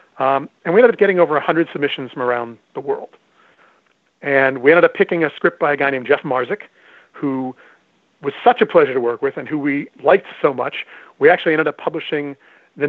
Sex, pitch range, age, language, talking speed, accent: male, 145-190 Hz, 40-59, English, 215 wpm, American